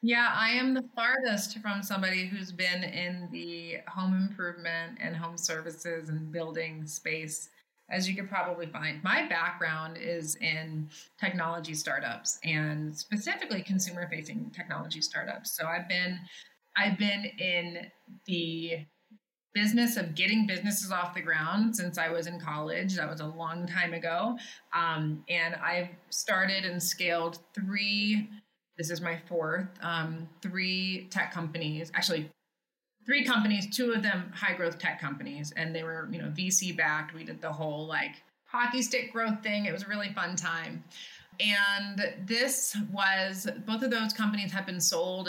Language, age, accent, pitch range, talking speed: English, 20-39, American, 165-210 Hz, 155 wpm